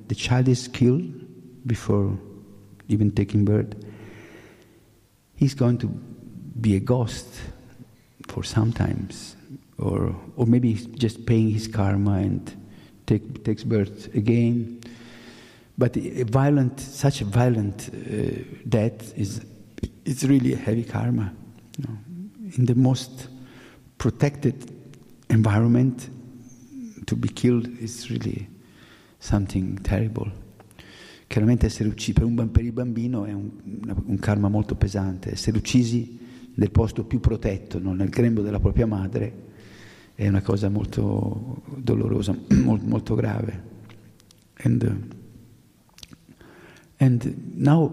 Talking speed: 115 wpm